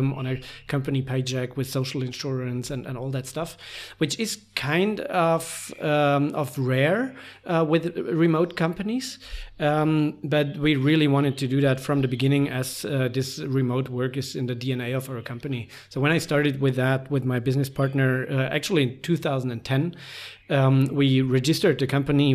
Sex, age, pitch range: male, 40-59, 130-150 Hz